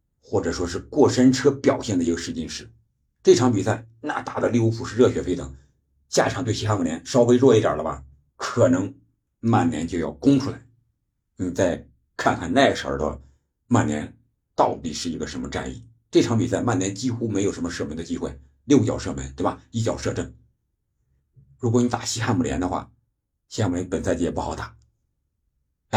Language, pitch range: Chinese, 85-120 Hz